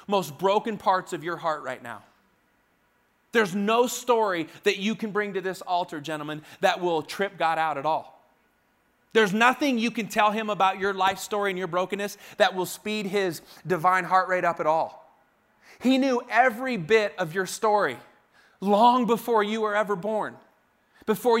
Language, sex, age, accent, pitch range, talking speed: English, male, 30-49, American, 165-210 Hz, 175 wpm